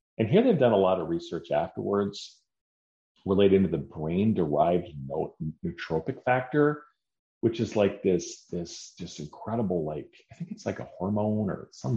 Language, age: English, 40-59